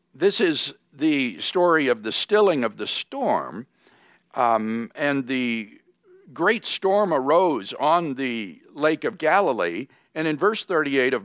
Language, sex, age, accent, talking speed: English, male, 60-79, American, 140 wpm